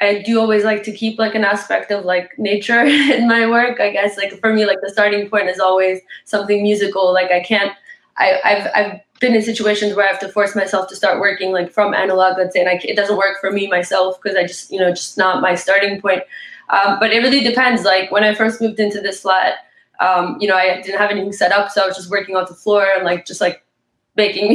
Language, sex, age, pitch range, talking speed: English, female, 20-39, 185-210 Hz, 255 wpm